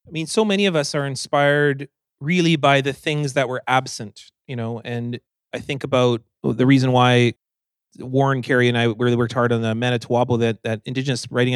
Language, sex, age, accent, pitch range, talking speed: English, male, 30-49, American, 115-140 Hz, 195 wpm